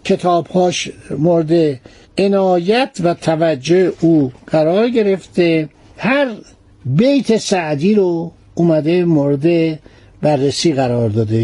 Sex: male